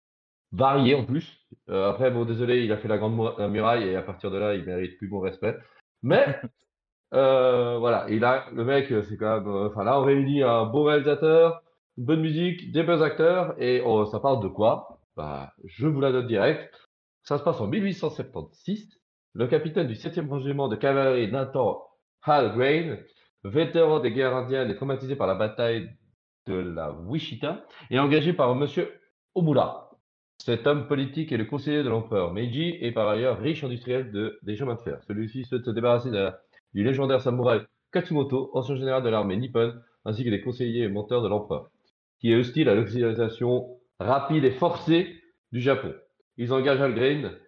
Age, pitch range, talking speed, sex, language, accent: 40-59, 115-145 Hz, 180 wpm, male, French, French